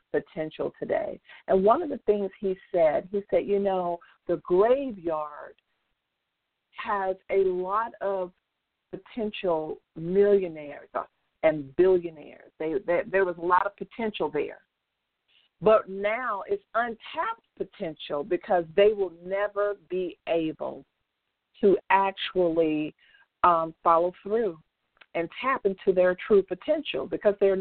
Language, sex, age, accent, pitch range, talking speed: English, female, 50-69, American, 175-235 Hz, 120 wpm